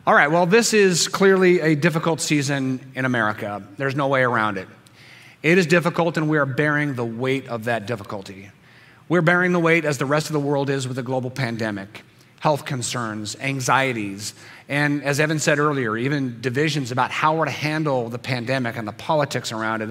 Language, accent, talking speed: English, American, 195 wpm